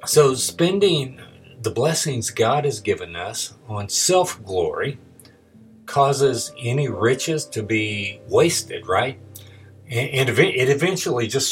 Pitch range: 110-135 Hz